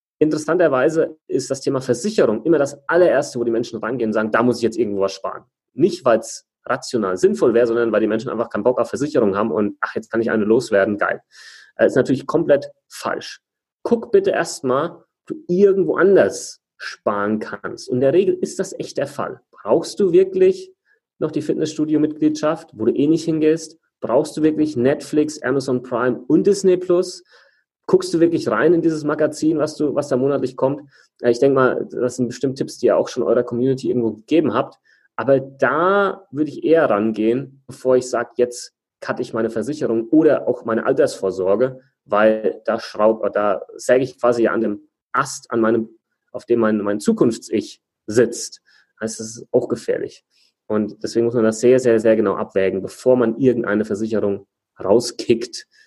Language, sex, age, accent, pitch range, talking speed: German, male, 30-49, German, 115-155 Hz, 185 wpm